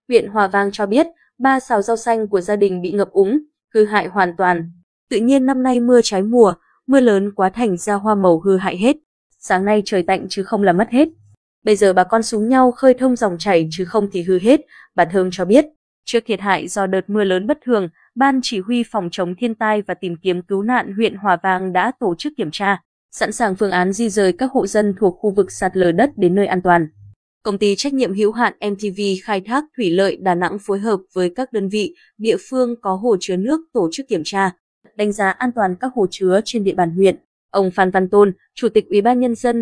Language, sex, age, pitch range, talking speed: Vietnamese, female, 20-39, 185-240 Hz, 245 wpm